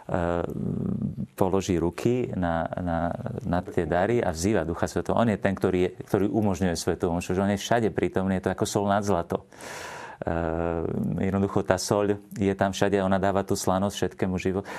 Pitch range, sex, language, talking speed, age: 90-100 Hz, male, Slovak, 180 wpm, 30-49